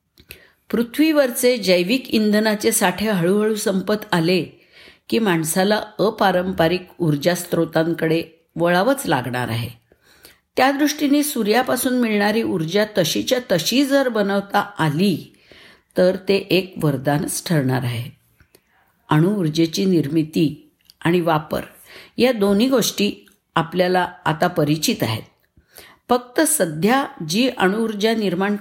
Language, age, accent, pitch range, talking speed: Marathi, 50-69, native, 170-225 Hz, 95 wpm